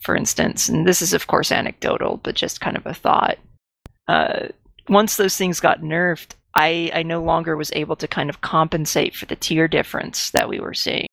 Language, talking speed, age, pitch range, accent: English, 205 wpm, 30-49, 160-190 Hz, American